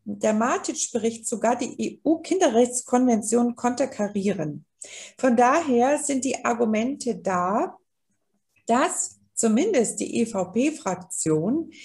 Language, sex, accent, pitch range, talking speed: German, female, German, 200-280 Hz, 80 wpm